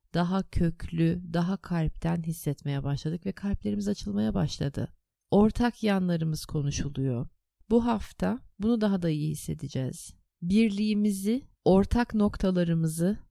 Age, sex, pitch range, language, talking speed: 30-49, female, 155-200 Hz, Turkish, 105 wpm